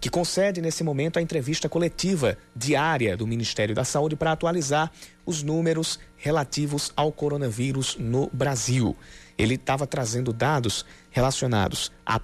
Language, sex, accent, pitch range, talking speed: Portuguese, male, Brazilian, 115-160 Hz, 130 wpm